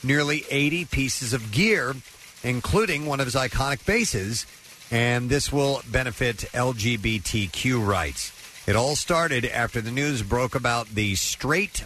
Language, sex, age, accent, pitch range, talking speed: English, male, 50-69, American, 100-130 Hz, 135 wpm